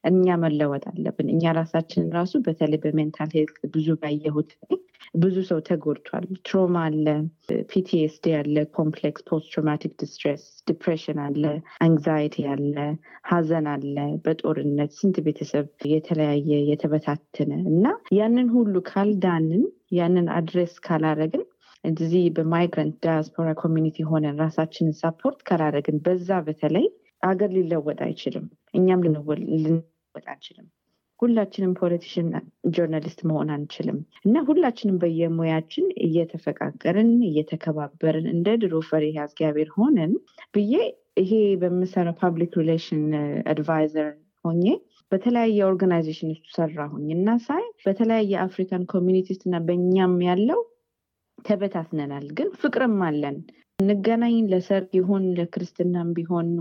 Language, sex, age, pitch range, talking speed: Amharic, female, 30-49, 155-190 Hz, 90 wpm